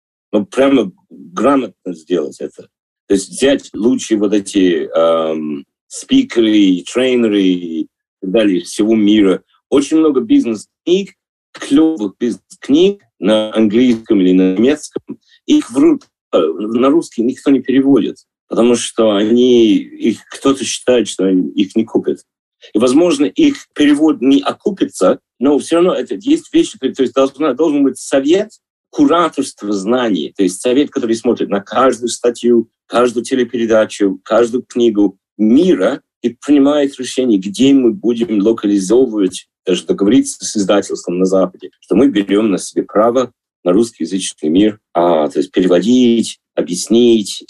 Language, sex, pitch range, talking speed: Russian, male, 105-165 Hz, 135 wpm